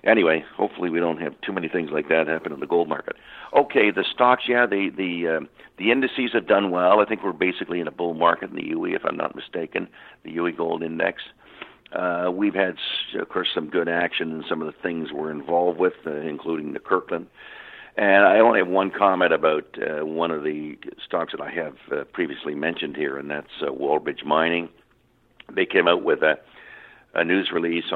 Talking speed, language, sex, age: 210 wpm, English, male, 60-79